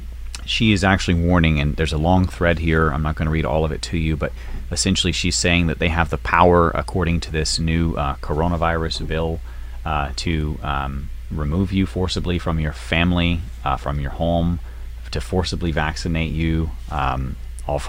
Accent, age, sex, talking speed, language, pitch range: American, 30-49, male, 185 wpm, English, 70-85 Hz